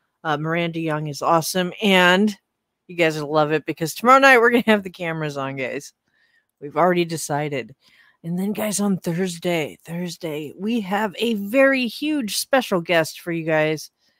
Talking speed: 170 wpm